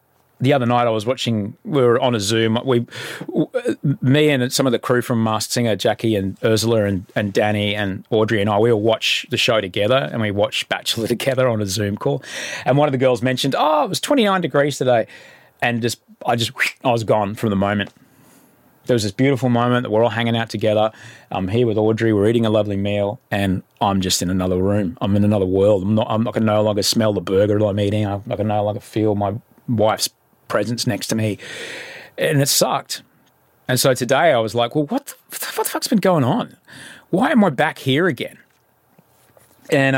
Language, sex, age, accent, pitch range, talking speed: English, male, 30-49, Australian, 105-135 Hz, 225 wpm